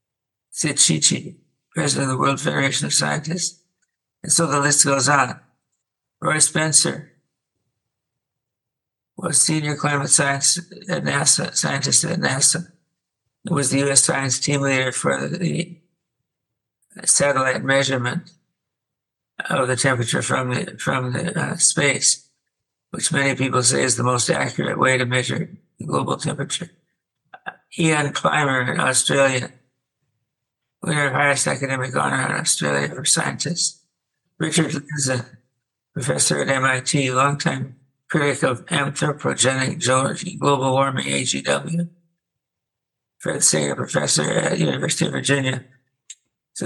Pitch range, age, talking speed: 130-165 Hz, 60-79, 120 wpm